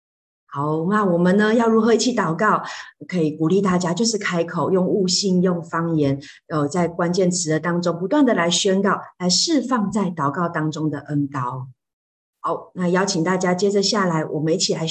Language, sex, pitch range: Chinese, female, 165-210 Hz